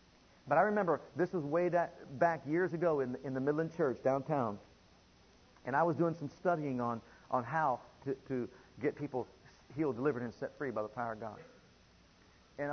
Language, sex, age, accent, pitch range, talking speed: English, male, 40-59, American, 120-160 Hz, 190 wpm